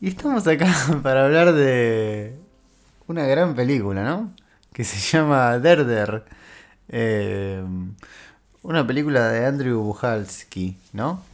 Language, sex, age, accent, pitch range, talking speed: Spanish, male, 20-39, Argentinian, 95-125 Hz, 115 wpm